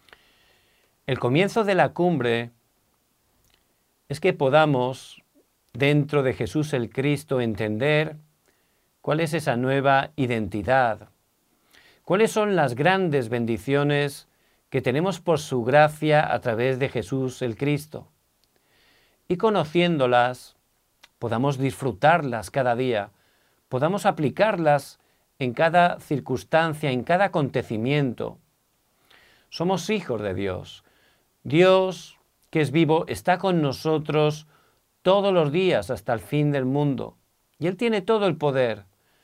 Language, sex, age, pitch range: Korean, male, 50-69, 125-170 Hz